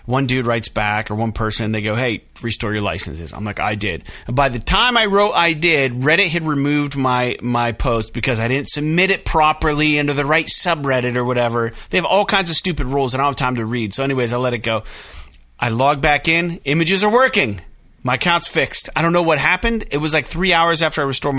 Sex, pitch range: male, 120-180 Hz